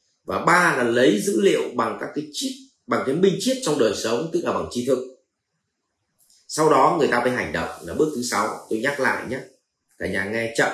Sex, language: male, Vietnamese